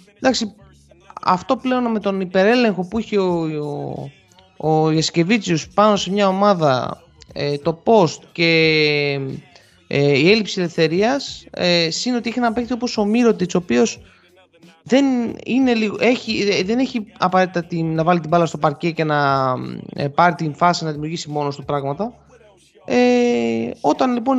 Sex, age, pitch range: male, 20-39, 140-220 Hz